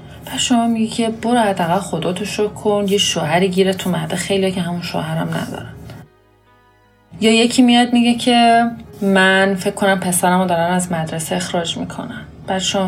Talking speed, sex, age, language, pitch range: 160 wpm, female, 30-49, Persian, 165-210 Hz